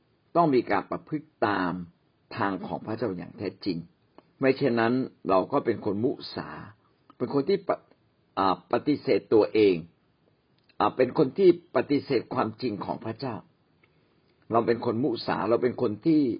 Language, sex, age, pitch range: Thai, male, 60-79, 115-145 Hz